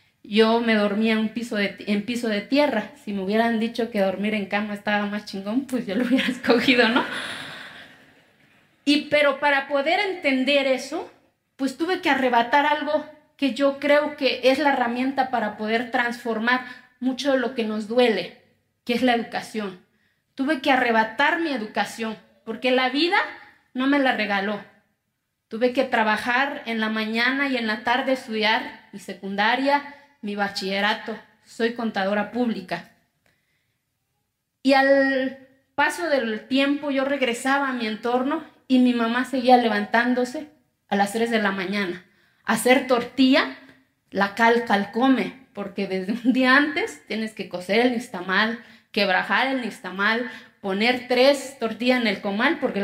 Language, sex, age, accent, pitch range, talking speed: Spanish, female, 30-49, Mexican, 215-270 Hz, 155 wpm